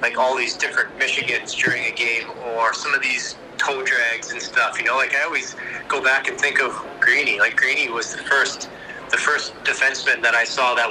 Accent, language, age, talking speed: American, English, 30-49, 215 wpm